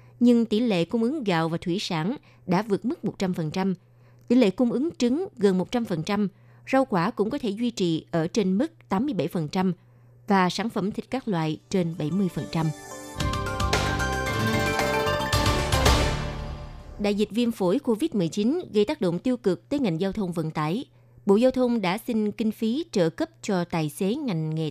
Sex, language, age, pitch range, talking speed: female, Vietnamese, 20-39, 165-225 Hz, 170 wpm